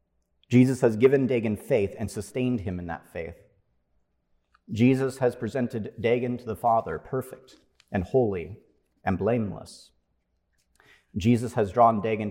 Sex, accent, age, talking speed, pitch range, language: male, American, 40-59, 130 wpm, 75-105 Hz, English